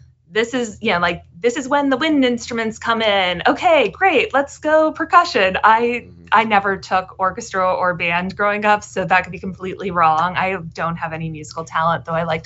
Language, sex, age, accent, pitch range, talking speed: English, female, 20-39, American, 180-230 Hz, 200 wpm